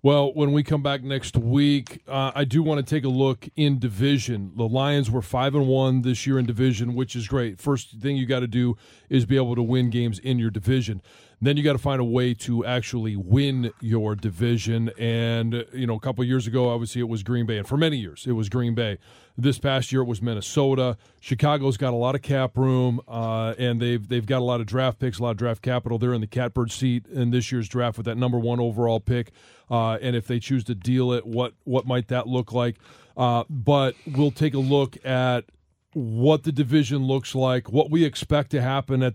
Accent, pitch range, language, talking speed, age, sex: American, 120-135 Hz, English, 235 wpm, 40-59, male